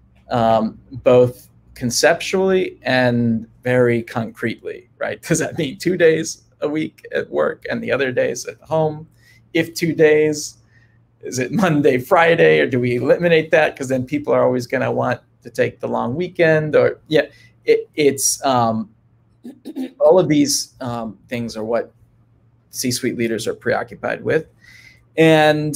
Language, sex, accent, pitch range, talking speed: English, male, American, 115-145 Hz, 150 wpm